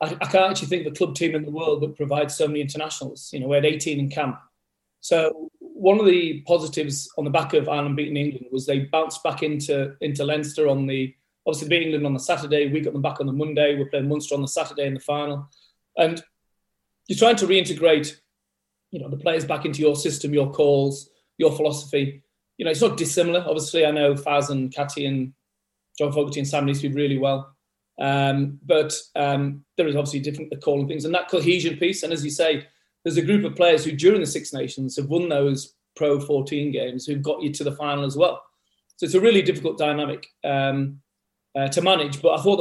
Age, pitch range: 30-49, 140-160 Hz